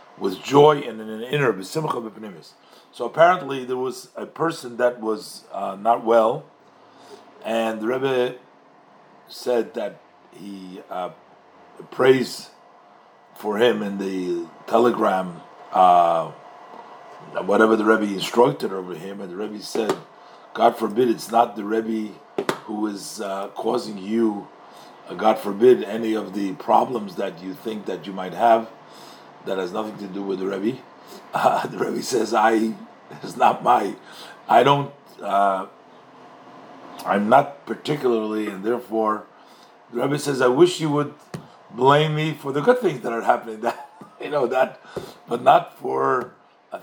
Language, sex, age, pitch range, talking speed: English, male, 40-59, 100-125 Hz, 145 wpm